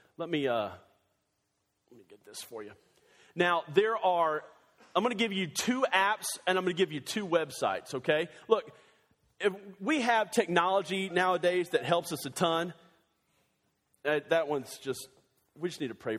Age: 40-59